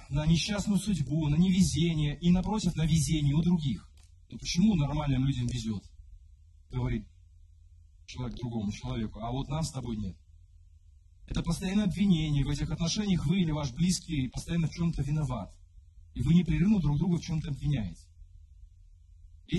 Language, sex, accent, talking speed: Russian, female, American, 150 wpm